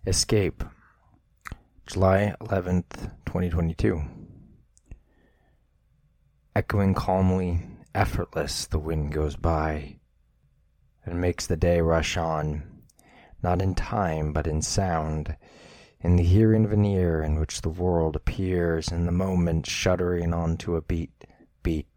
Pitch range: 80-95 Hz